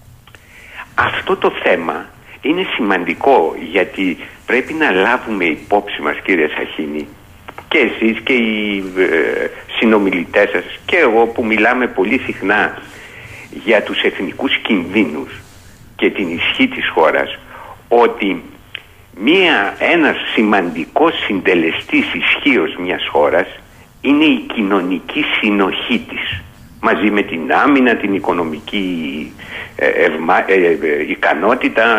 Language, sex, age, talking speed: Greek, male, 60-79, 100 wpm